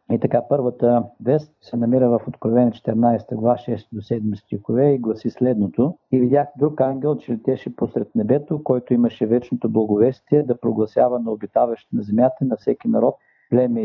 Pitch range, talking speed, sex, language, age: 115-130 Hz, 170 wpm, male, Bulgarian, 50-69